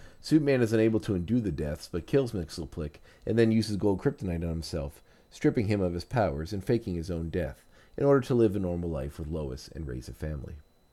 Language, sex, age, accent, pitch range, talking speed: English, male, 40-59, American, 85-115 Hz, 220 wpm